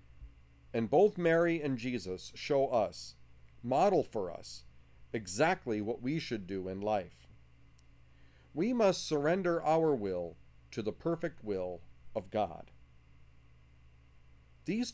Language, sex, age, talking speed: English, male, 40-59, 115 wpm